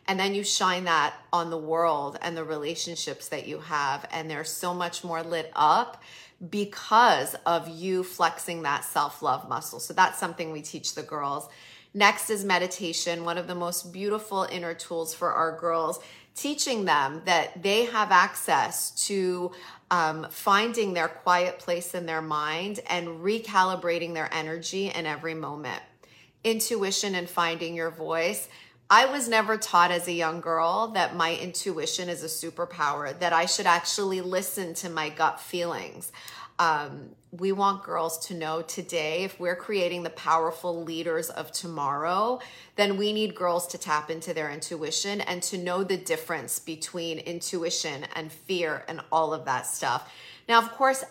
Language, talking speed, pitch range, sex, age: English, 165 wpm, 165-190 Hz, female, 30-49